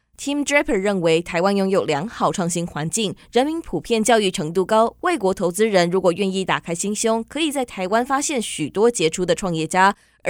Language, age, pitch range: Chinese, 20-39, 175-240 Hz